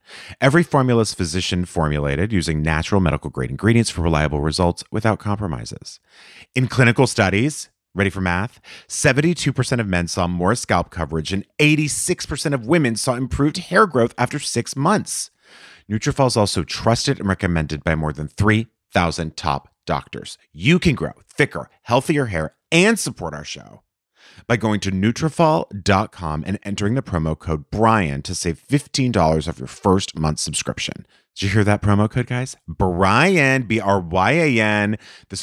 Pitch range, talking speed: 85-130 Hz, 150 wpm